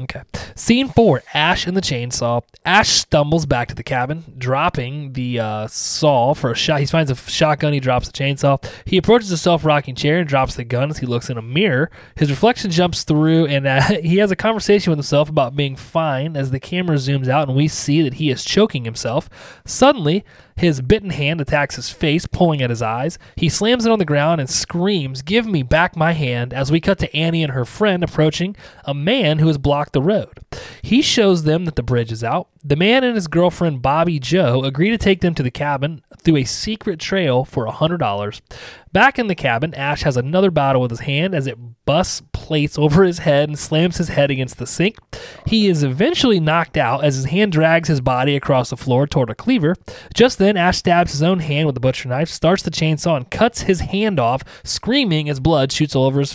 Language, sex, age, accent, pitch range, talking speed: English, male, 20-39, American, 135-175 Hz, 225 wpm